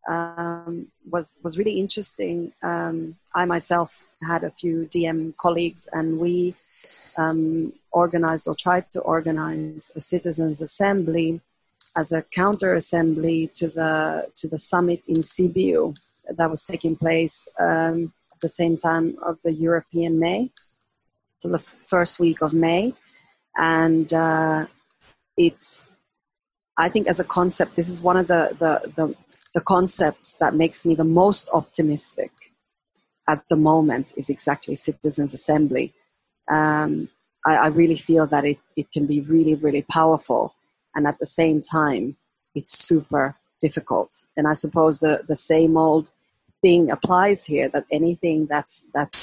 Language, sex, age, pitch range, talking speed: English, female, 30-49, 155-175 Hz, 145 wpm